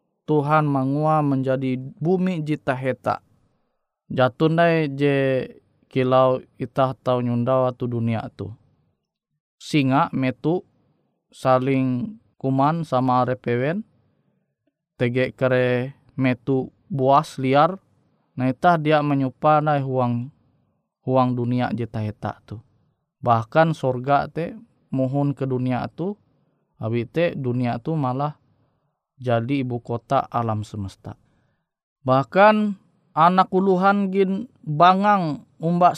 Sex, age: male, 20-39